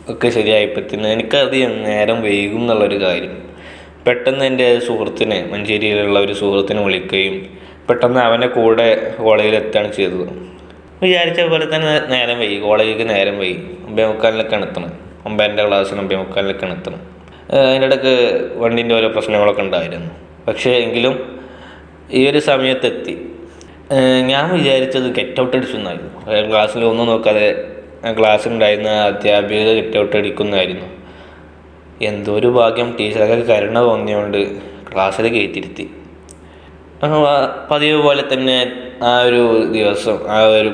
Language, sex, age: Malayalam, male, 20-39